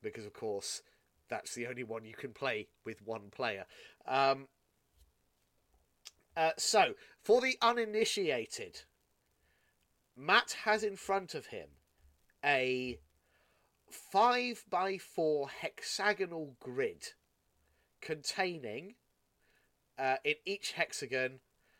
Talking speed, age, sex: 95 wpm, 30-49, male